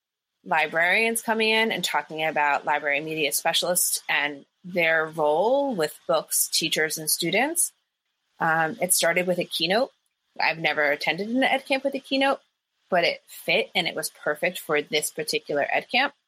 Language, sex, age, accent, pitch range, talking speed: English, female, 30-49, American, 160-195 Hz, 160 wpm